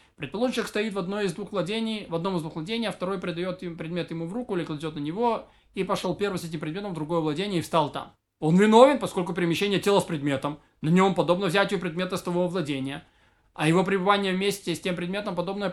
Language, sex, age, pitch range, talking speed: Russian, male, 20-39, 160-205 Hz, 225 wpm